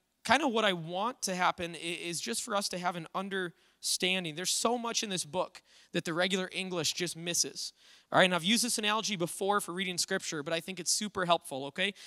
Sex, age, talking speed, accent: male, 20-39, 225 wpm, American